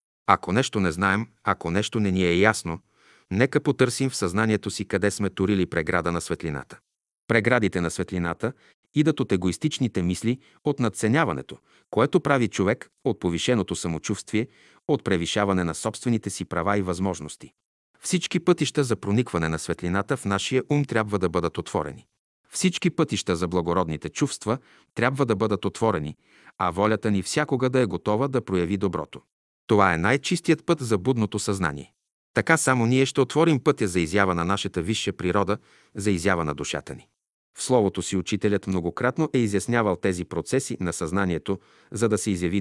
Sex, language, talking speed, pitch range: male, Bulgarian, 165 wpm, 90-125 Hz